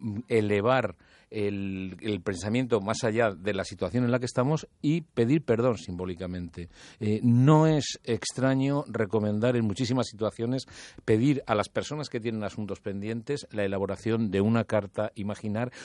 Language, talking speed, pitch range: Spanish, 150 wpm, 105-130 Hz